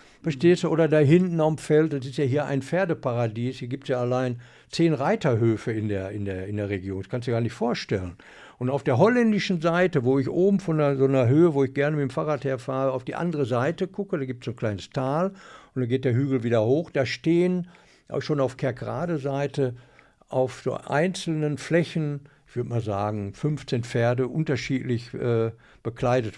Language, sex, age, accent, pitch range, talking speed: German, male, 60-79, German, 120-165 Hz, 210 wpm